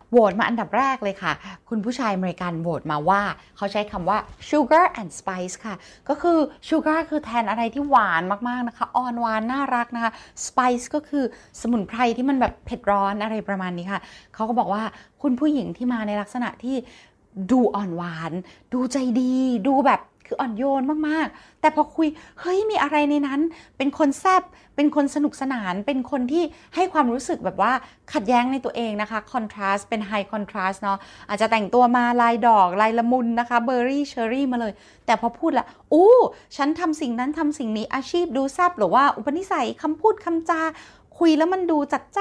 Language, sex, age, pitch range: Thai, female, 20-39, 215-300 Hz